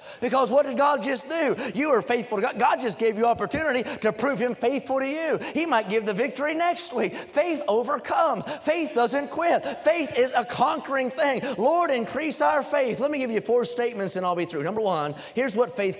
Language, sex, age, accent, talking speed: English, male, 30-49, American, 220 wpm